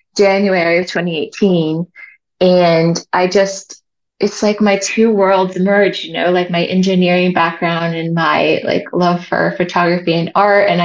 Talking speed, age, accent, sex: 150 wpm, 20-39, American, female